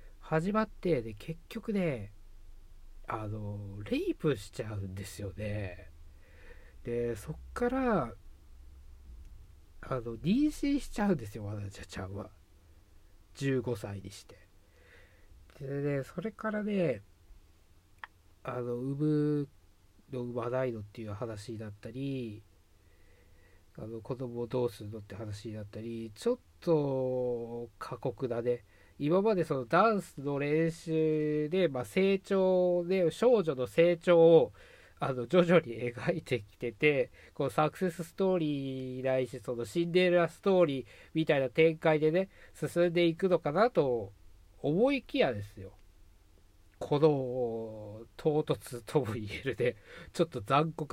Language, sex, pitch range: Japanese, male, 100-160 Hz